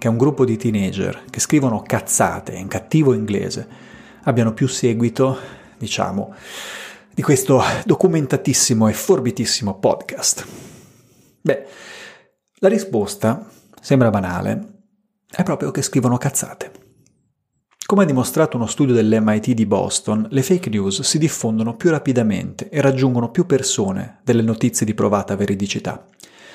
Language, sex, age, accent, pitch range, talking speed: Italian, male, 30-49, native, 115-145 Hz, 125 wpm